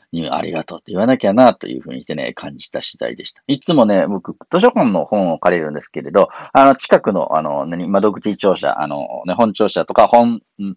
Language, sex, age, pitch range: Japanese, male, 40-59, 95-125 Hz